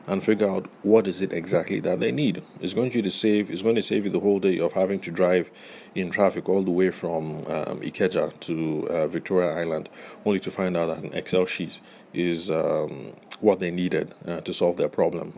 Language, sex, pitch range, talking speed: English, male, 85-100 Hz, 220 wpm